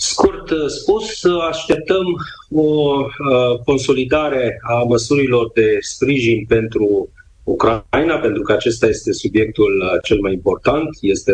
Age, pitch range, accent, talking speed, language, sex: 40-59, 105-150 Hz, native, 105 wpm, Romanian, male